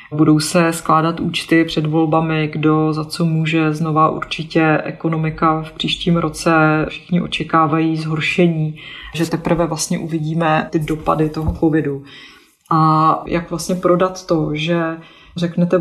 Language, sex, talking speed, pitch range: Czech, female, 130 wpm, 155-170 Hz